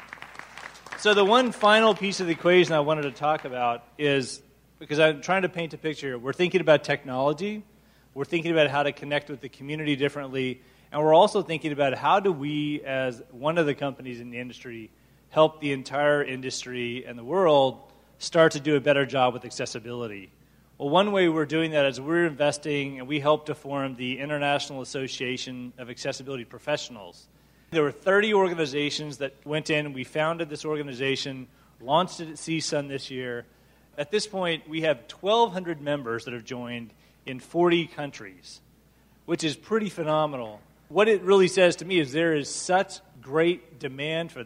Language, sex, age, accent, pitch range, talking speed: English, male, 30-49, American, 130-165 Hz, 180 wpm